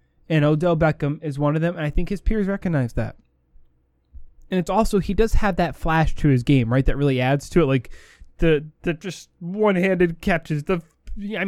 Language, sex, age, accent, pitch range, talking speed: English, male, 20-39, American, 135-200 Hz, 210 wpm